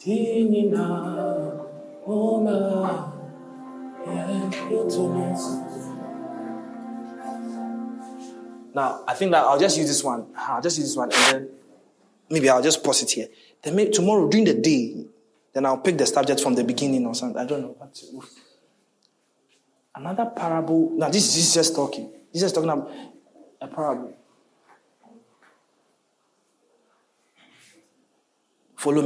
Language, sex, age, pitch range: English, male, 20-39, 145-235 Hz